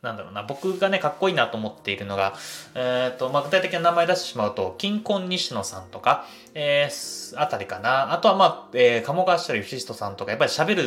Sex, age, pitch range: male, 20-39, 105-165 Hz